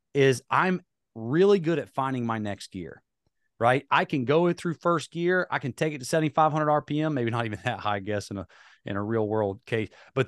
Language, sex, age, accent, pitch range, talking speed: English, male, 40-59, American, 125-170 Hz, 220 wpm